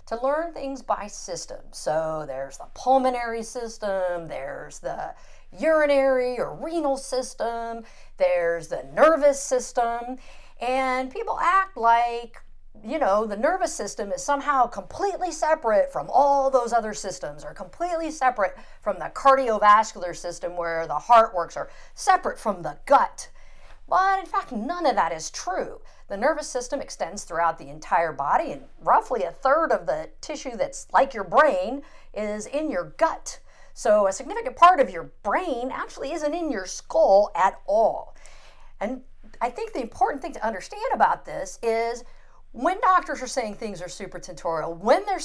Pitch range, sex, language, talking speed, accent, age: 210-315 Hz, female, English, 160 wpm, American, 50-69